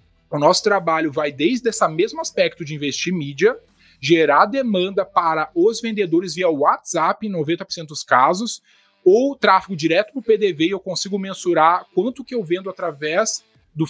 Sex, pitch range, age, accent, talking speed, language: male, 165-215 Hz, 20-39, Brazilian, 170 wpm, Portuguese